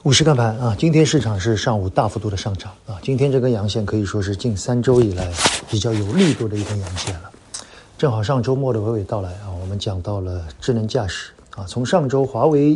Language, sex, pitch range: Chinese, male, 100-130 Hz